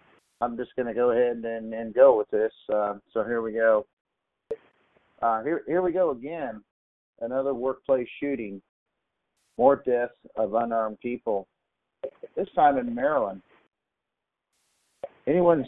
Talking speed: 135 wpm